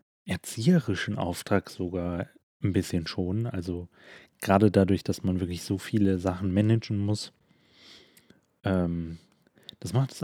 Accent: German